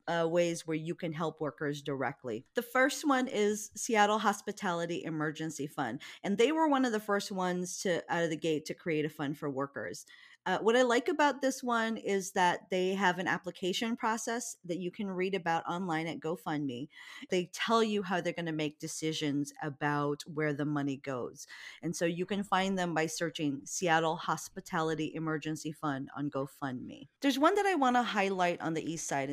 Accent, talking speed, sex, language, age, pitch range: American, 195 wpm, female, English, 40-59, 155-205 Hz